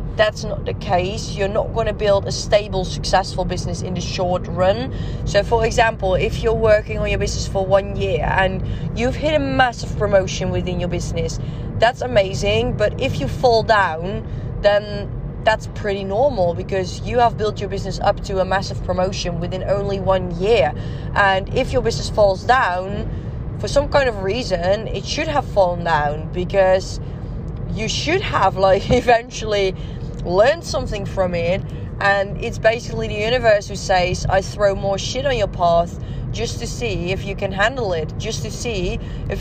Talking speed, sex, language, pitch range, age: 175 wpm, female, Dutch, 150-205 Hz, 20-39